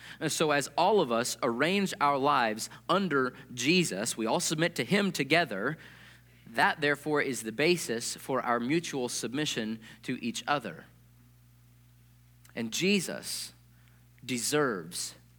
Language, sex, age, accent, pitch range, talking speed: English, male, 40-59, American, 100-145 Hz, 125 wpm